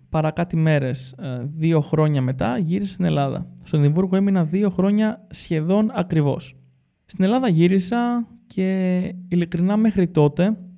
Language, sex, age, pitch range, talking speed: Greek, male, 20-39, 145-195 Hz, 120 wpm